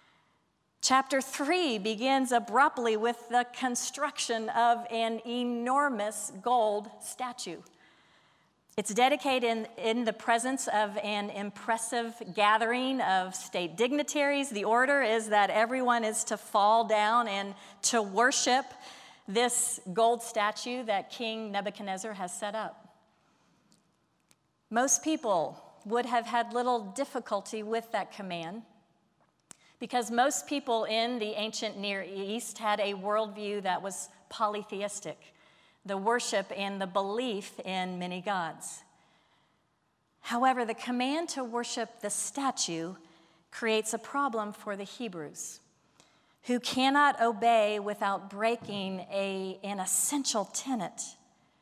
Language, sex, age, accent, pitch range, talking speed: English, female, 40-59, American, 205-245 Hz, 115 wpm